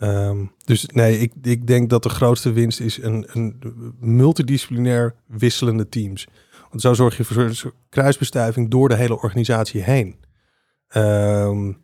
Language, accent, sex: Dutch, Dutch, male